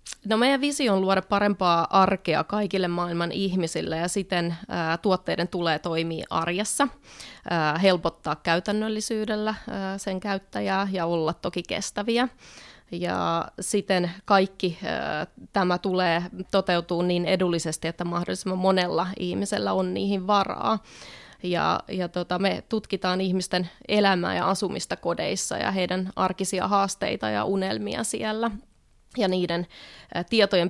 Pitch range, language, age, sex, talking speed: 170-195 Hz, Finnish, 20-39, female, 115 wpm